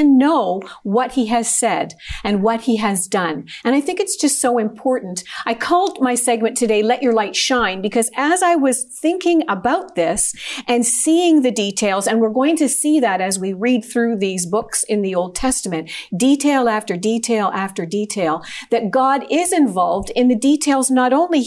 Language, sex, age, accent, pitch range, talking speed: English, female, 50-69, American, 215-280 Hz, 185 wpm